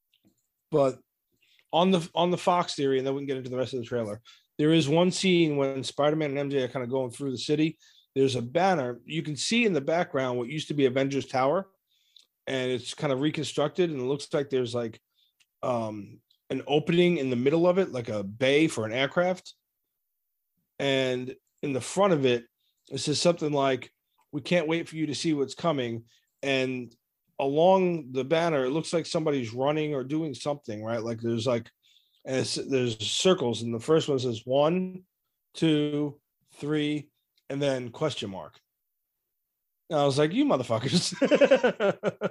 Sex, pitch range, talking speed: male, 125-165 Hz, 180 wpm